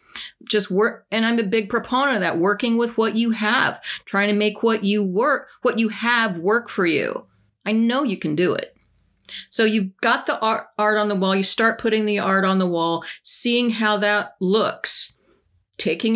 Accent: American